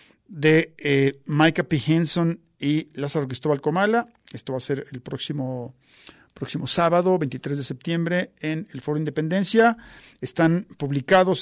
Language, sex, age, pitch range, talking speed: Spanish, male, 50-69, 145-185 Hz, 135 wpm